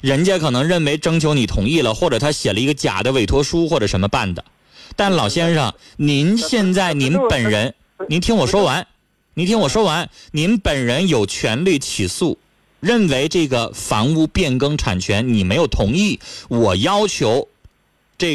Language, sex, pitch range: Chinese, male, 110-165 Hz